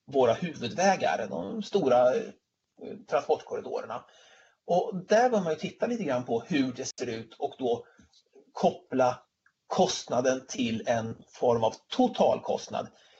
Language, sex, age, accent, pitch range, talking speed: Swedish, male, 30-49, native, 130-200 Hz, 125 wpm